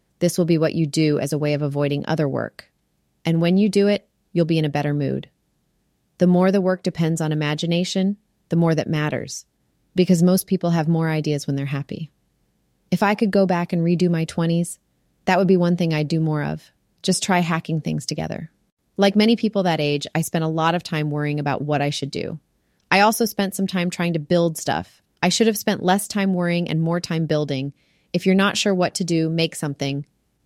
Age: 30-49